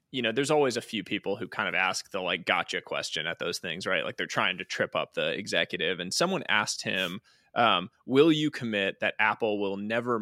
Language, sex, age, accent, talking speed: English, male, 20-39, American, 230 wpm